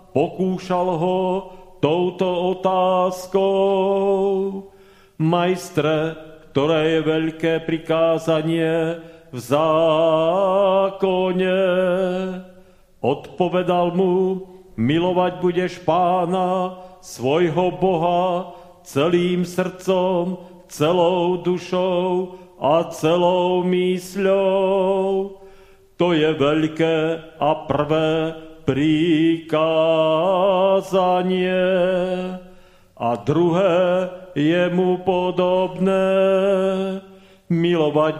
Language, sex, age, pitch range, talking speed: Slovak, male, 40-59, 160-185 Hz, 60 wpm